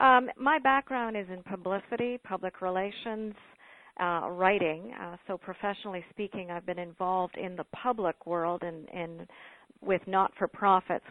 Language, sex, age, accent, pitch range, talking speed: English, female, 50-69, American, 175-210 Hz, 145 wpm